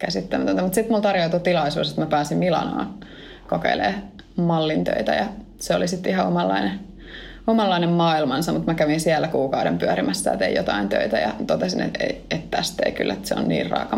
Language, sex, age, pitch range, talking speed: Finnish, female, 20-39, 155-200 Hz, 170 wpm